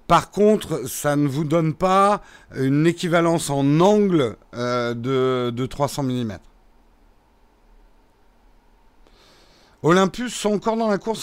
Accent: French